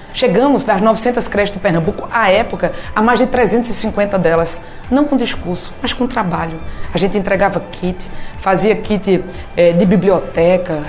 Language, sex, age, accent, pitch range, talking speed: Portuguese, female, 20-39, Brazilian, 180-225 Hz, 150 wpm